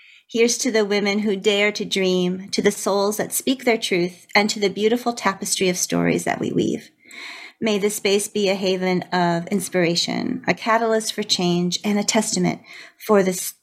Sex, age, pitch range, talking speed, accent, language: female, 40-59, 175-215 Hz, 185 wpm, American, English